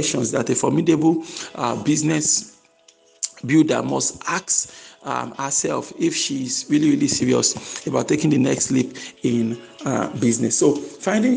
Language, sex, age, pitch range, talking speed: English, male, 50-69, 125-190 Hz, 130 wpm